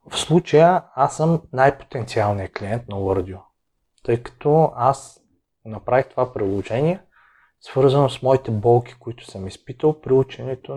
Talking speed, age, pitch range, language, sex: 130 wpm, 30-49, 110-140 Hz, Bulgarian, male